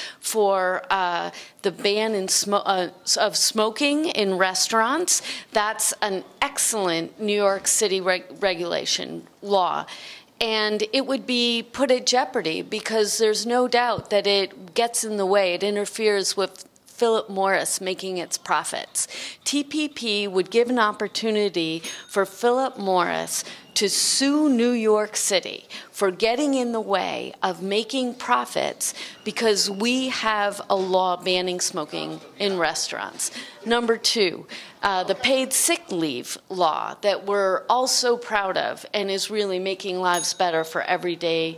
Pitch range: 185-235 Hz